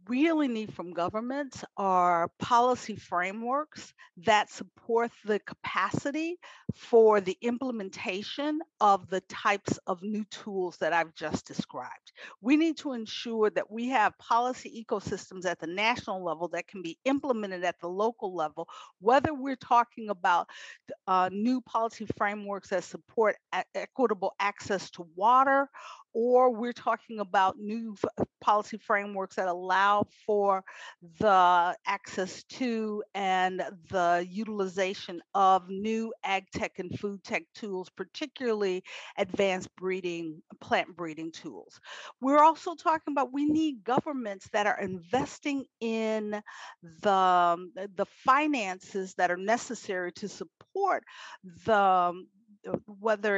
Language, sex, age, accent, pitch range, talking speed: English, female, 50-69, American, 185-240 Hz, 125 wpm